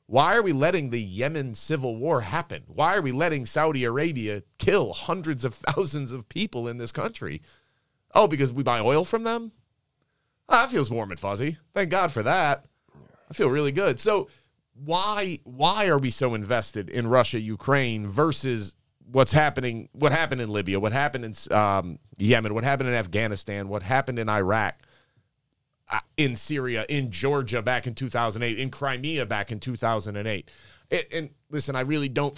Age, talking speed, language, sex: 30-49, 170 wpm, English, male